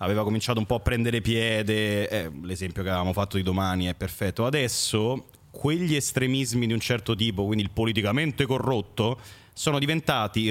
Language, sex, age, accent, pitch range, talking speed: Italian, male, 30-49, native, 100-135 Hz, 165 wpm